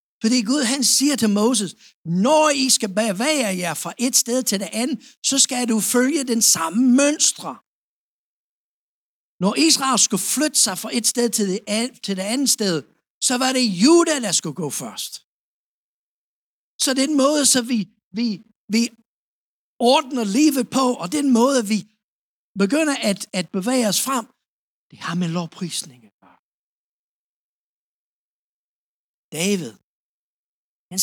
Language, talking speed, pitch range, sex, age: Danish, 135 wpm, 190-255 Hz, male, 60-79